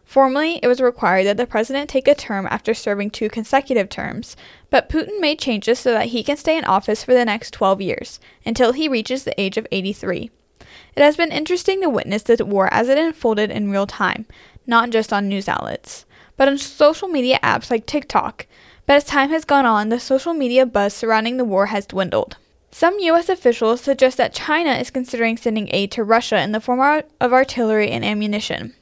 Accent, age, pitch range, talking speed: American, 10-29, 215-275 Hz, 205 wpm